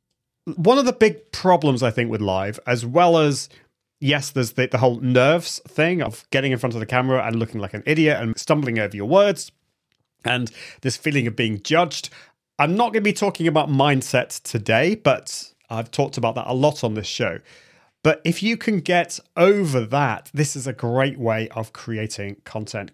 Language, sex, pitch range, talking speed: English, male, 120-170 Hz, 200 wpm